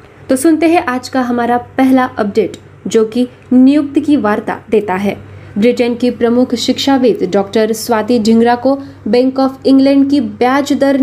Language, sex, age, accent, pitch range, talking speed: Marathi, female, 20-39, native, 230-275 Hz, 160 wpm